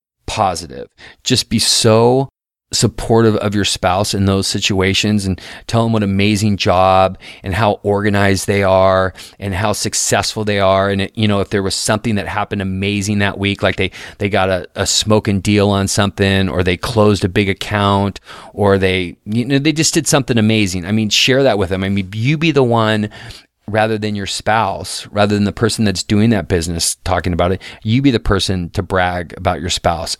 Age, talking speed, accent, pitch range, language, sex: 30-49, 200 wpm, American, 95-110 Hz, English, male